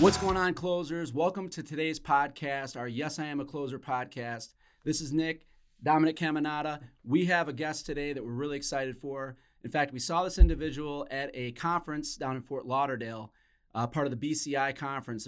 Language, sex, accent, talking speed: English, male, American, 195 wpm